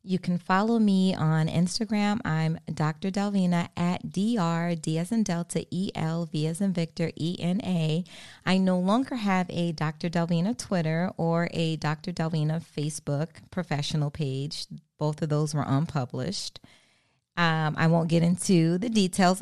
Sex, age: female, 20-39